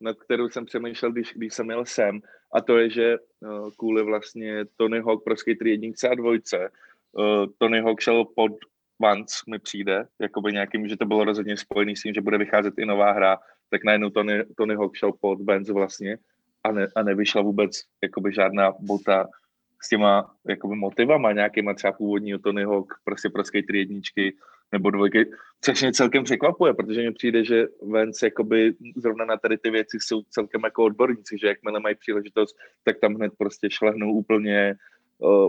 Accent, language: native, Czech